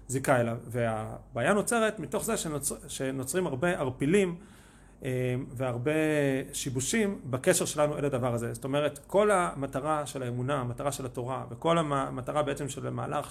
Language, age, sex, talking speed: Hebrew, 40-59, male, 140 wpm